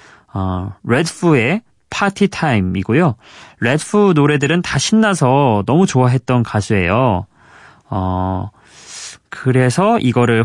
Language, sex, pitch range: Korean, male, 105-155 Hz